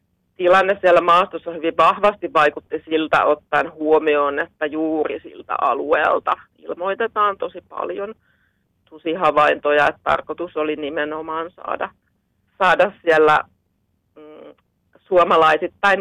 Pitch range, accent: 150-170 Hz, native